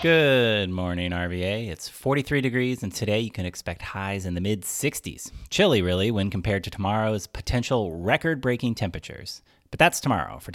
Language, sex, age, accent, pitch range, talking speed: English, male, 30-49, American, 90-120 Hz, 160 wpm